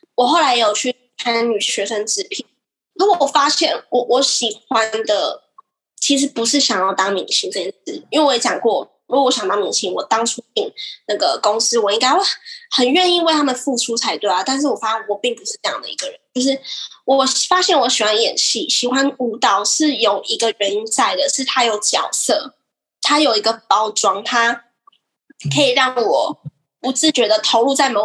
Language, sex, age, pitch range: Chinese, female, 10-29, 230-310 Hz